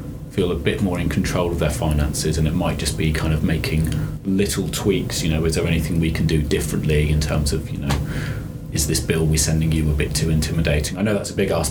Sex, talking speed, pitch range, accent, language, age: male, 250 wpm, 80-105 Hz, British, English, 30-49